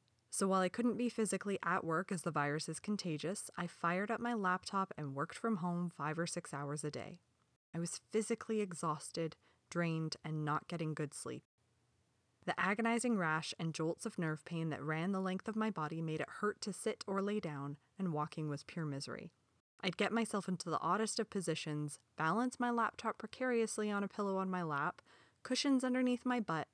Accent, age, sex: American, 20-39, female